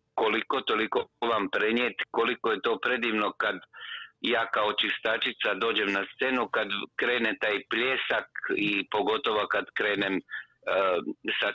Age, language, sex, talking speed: 50-69, Croatian, male, 130 wpm